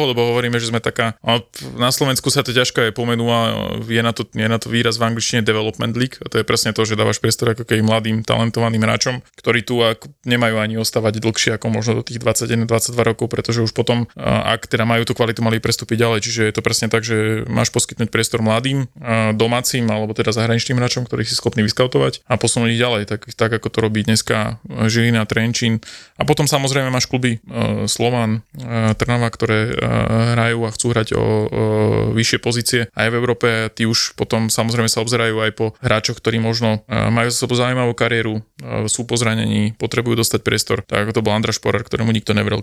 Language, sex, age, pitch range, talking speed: Slovak, male, 20-39, 110-120 Hz, 190 wpm